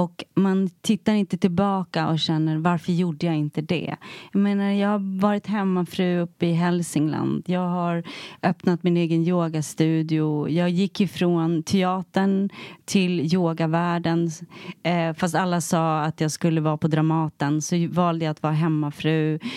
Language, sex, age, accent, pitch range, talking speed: English, female, 30-49, Swedish, 165-200 Hz, 145 wpm